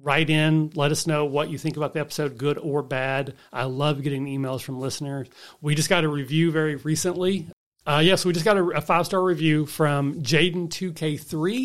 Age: 40-59